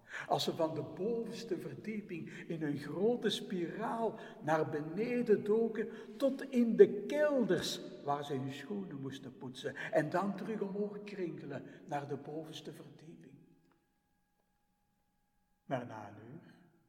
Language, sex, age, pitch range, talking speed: Dutch, male, 60-79, 135-195 Hz, 125 wpm